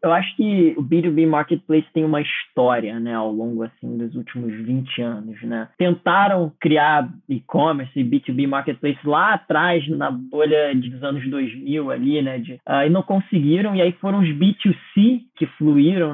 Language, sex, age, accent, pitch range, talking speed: Portuguese, male, 20-39, Brazilian, 150-185 Hz, 165 wpm